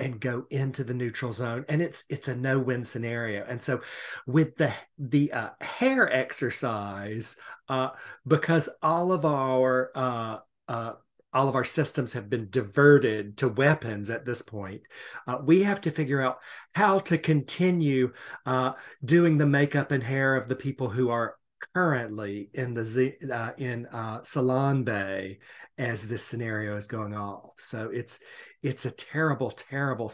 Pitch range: 115-145 Hz